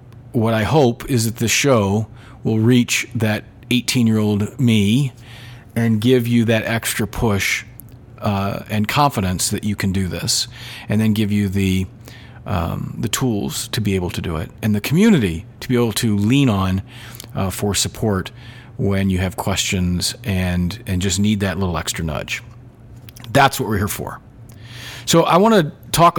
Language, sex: English, male